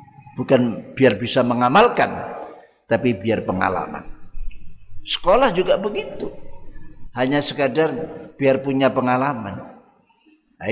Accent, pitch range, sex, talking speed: native, 115-155 Hz, male, 90 wpm